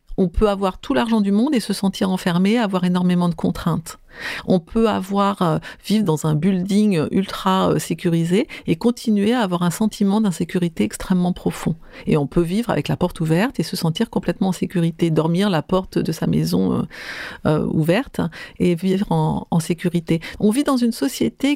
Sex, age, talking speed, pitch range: female, 50-69, 185 wpm, 170-215 Hz